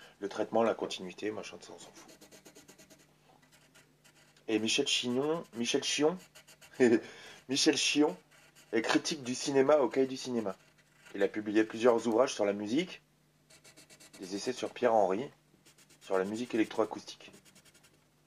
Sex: male